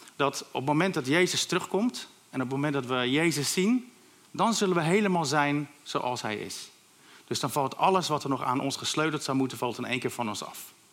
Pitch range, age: 120-155 Hz, 50-69